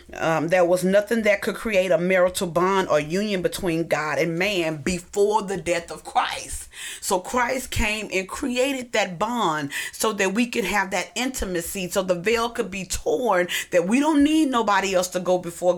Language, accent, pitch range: English, American, 165-200 Hz